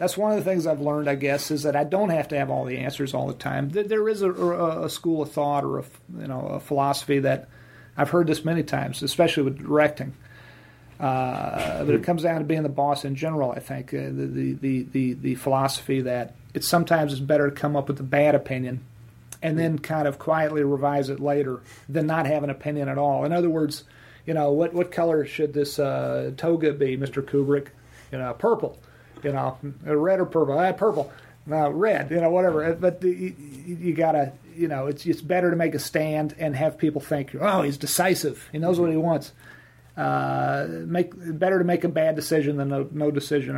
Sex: male